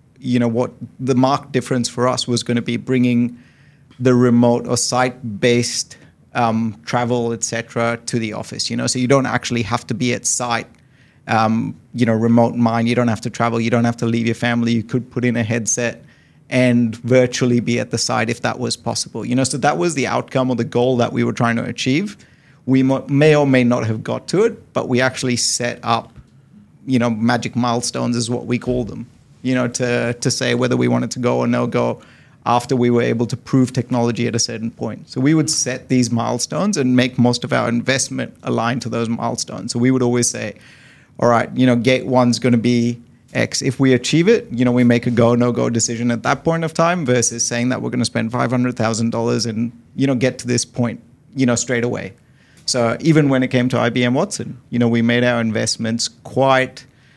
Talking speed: 220 wpm